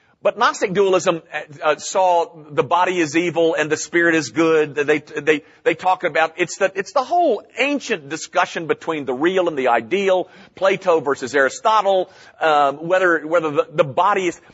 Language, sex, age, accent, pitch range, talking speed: English, male, 50-69, American, 155-240 Hz, 170 wpm